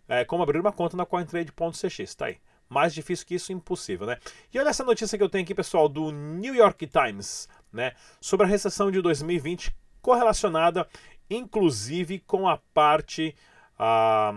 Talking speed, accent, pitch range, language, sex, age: 165 wpm, Brazilian, 150-190 Hz, Portuguese, male, 40-59